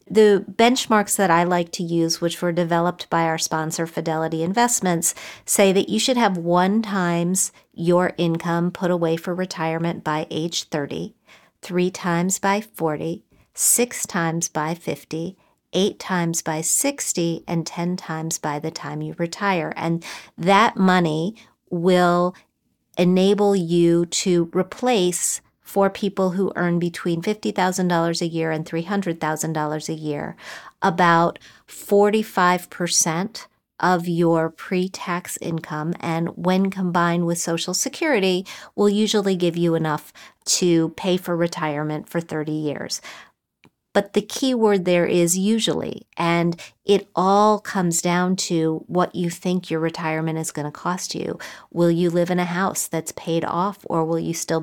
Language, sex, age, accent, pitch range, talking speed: English, female, 40-59, American, 165-190 Hz, 145 wpm